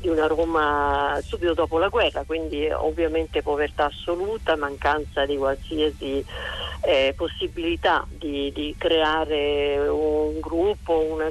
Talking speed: 115 wpm